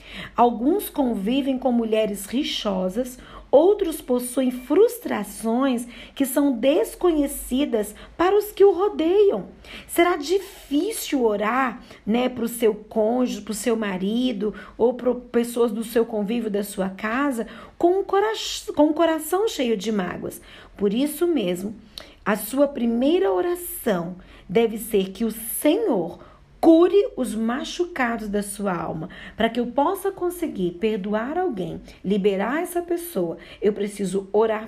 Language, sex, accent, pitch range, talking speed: Portuguese, female, Brazilian, 210-295 Hz, 130 wpm